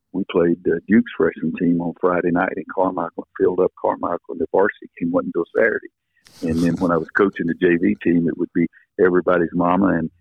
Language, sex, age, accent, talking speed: English, male, 50-69, American, 220 wpm